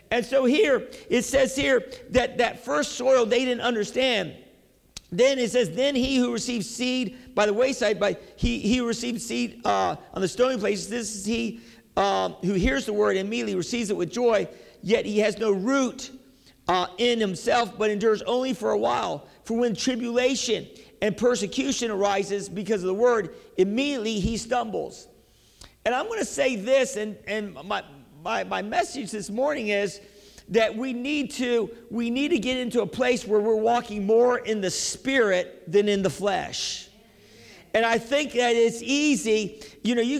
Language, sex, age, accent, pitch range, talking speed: English, male, 50-69, American, 205-250 Hz, 180 wpm